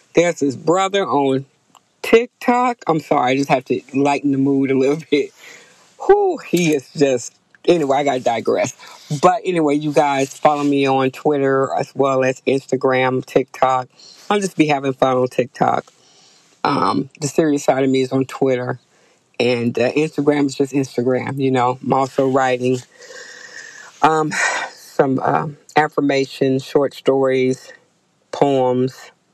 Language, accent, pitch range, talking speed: English, American, 130-155 Hz, 145 wpm